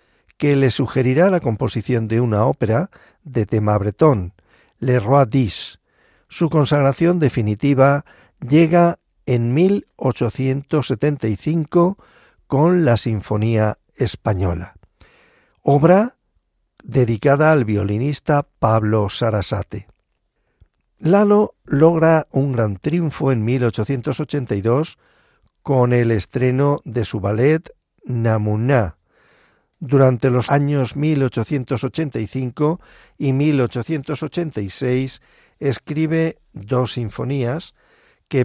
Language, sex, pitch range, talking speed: Spanish, male, 115-150 Hz, 85 wpm